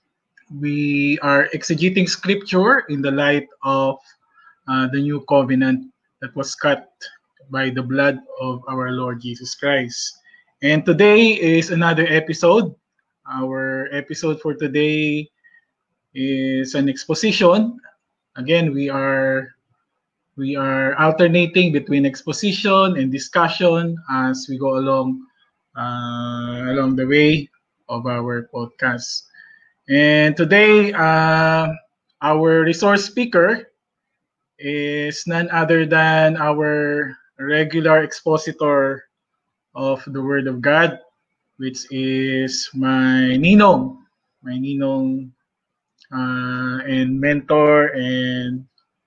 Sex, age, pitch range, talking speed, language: male, 20-39, 130-170 Hz, 105 wpm, English